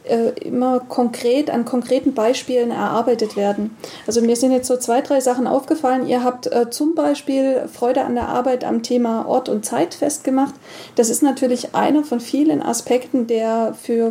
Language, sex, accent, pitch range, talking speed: German, female, German, 230-275 Hz, 170 wpm